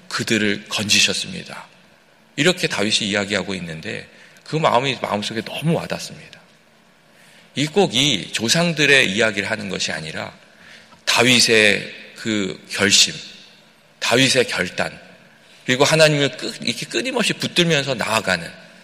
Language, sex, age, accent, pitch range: Korean, male, 40-59, native, 100-150 Hz